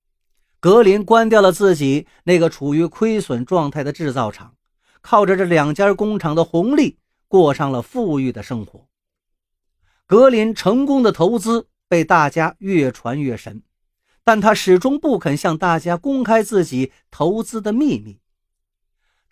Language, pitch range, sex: Chinese, 125-205 Hz, male